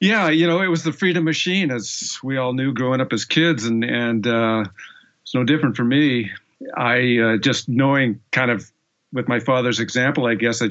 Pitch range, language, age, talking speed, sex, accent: 110-125 Hz, English, 50-69, 205 wpm, male, American